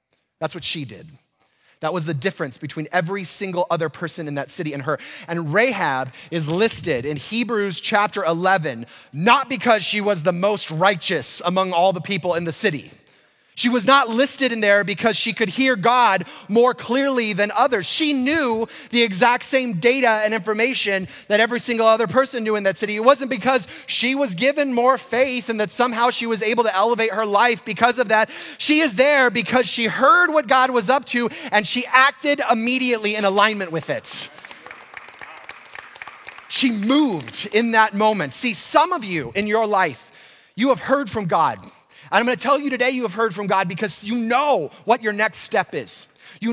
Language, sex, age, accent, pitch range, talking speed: English, male, 30-49, American, 195-255 Hz, 190 wpm